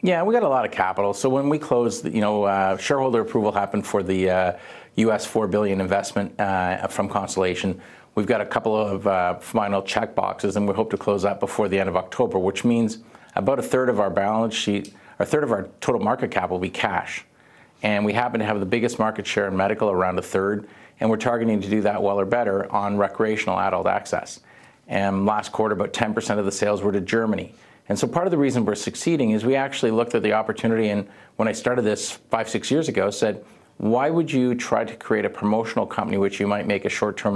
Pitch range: 100-110 Hz